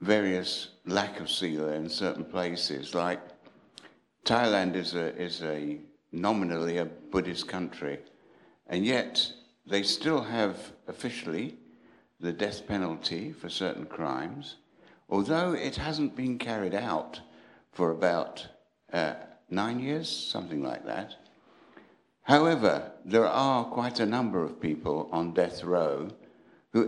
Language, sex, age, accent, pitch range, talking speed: English, male, 60-79, British, 85-115 Hz, 125 wpm